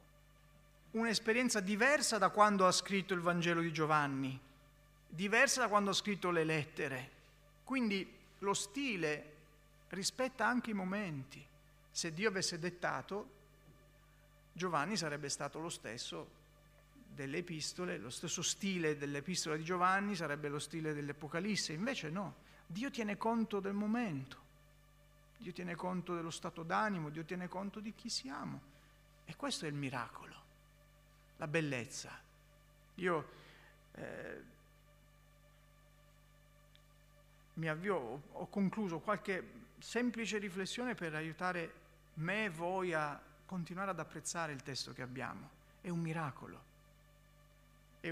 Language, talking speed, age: Italian, 120 wpm, 50-69